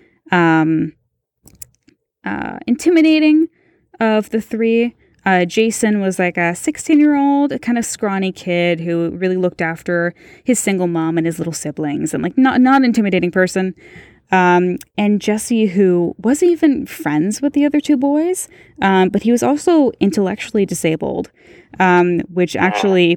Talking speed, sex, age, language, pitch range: 150 wpm, female, 10-29, English, 175-235 Hz